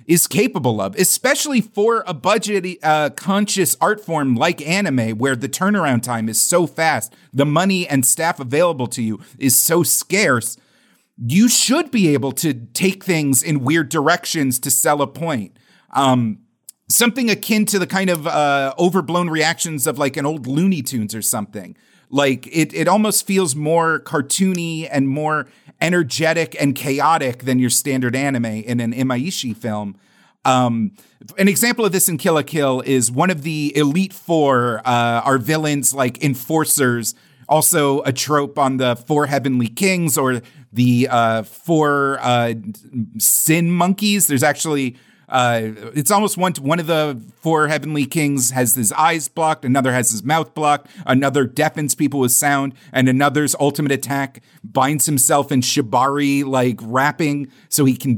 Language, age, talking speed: English, 40-59, 160 wpm